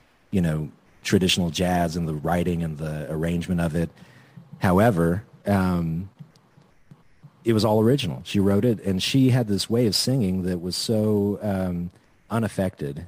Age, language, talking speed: 40-59, English, 150 wpm